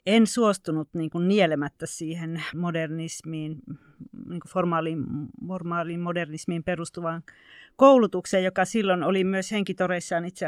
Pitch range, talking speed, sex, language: 165-195 Hz, 95 wpm, female, Finnish